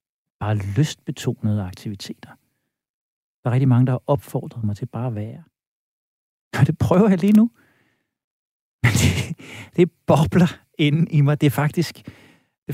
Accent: native